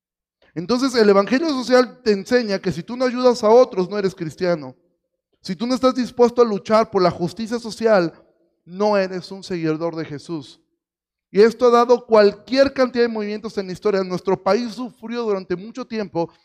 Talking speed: 185 wpm